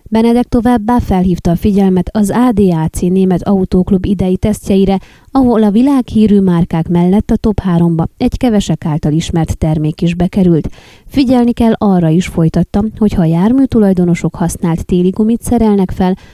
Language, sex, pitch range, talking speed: Hungarian, female, 170-215 Hz, 145 wpm